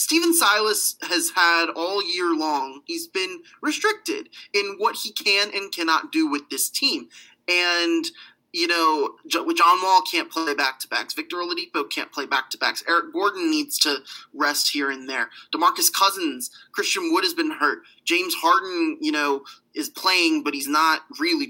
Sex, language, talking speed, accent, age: male, English, 175 wpm, American, 20-39